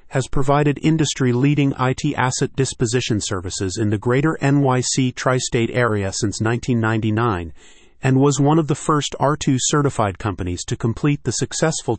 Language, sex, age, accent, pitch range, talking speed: English, male, 30-49, American, 105-135 Hz, 135 wpm